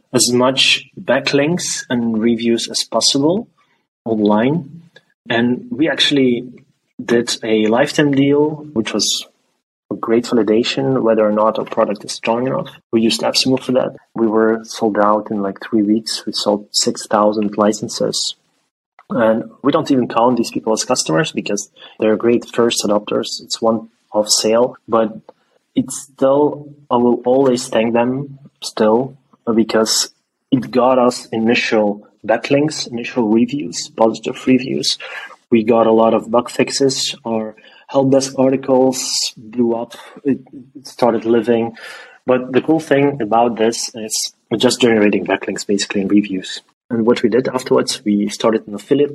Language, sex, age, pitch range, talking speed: English, male, 20-39, 110-130 Hz, 150 wpm